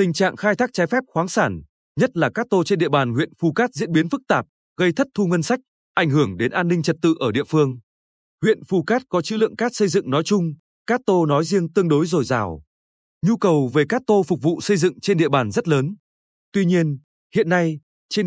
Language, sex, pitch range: Vietnamese, male, 150-205 Hz